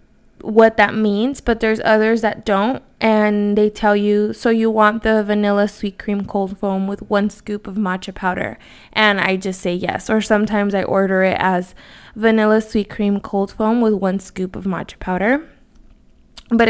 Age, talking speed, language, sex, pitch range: 20-39, 180 wpm, English, female, 200-230 Hz